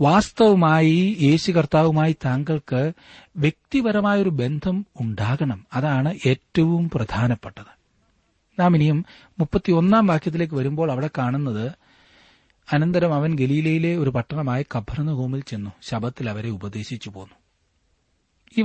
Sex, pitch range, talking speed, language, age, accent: male, 105-155 Hz, 95 wpm, Malayalam, 40-59, native